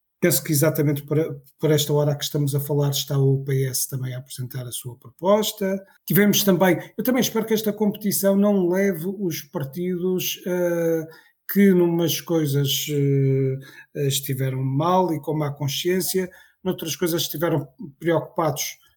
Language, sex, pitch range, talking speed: Portuguese, male, 145-180 Hz, 145 wpm